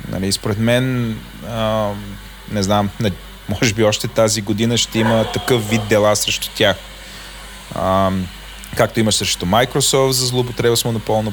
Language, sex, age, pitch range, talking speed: Bulgarian, male, 20-39, 100-125 Hz, 125 wpm